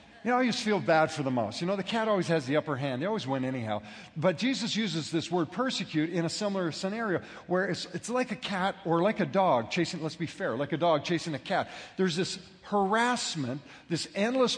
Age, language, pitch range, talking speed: 40-59, English, 155-200 Hz, 235 wpm